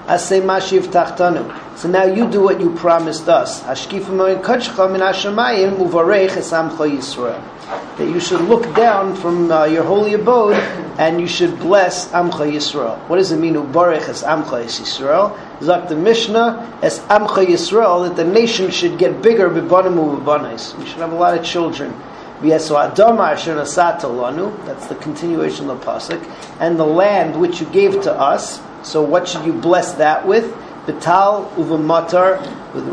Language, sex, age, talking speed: English, male, 40-59, 125 wpm